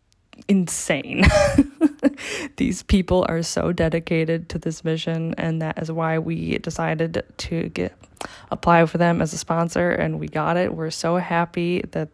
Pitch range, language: 160-185 Hz, English